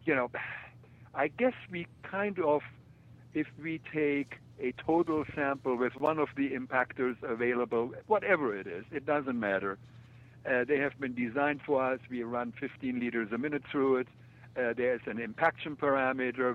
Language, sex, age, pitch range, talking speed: English, male, 60-79, 120-140 Hz, 165 wpm